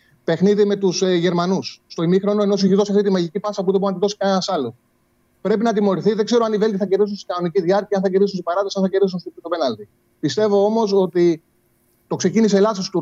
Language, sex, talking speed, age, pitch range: Greek, male, 220 wpm, 30-49, 160-200 Hz